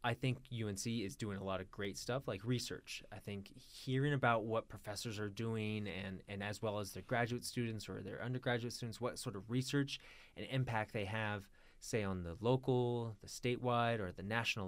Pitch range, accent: 105-130 Hz, American